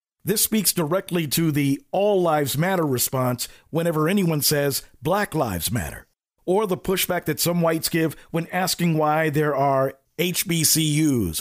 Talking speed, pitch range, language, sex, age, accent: 145 wpm, 145-185 Hz, English, male, 50-69, American